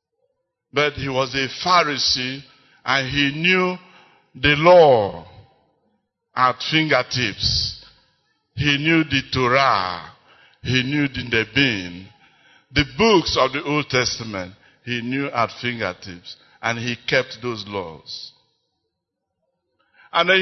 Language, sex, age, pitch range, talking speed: English, male, 60-79, 120-175 Hz, 110 wpm